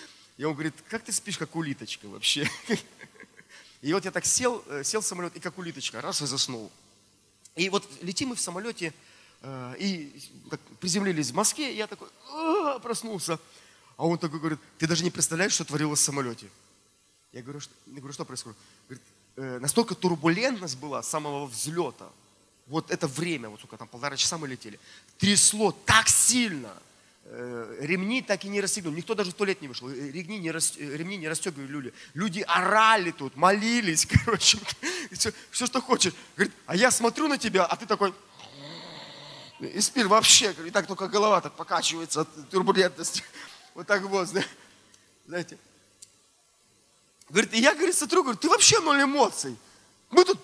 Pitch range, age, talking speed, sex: 145-215 Hz, 30-49, 150 wpm, male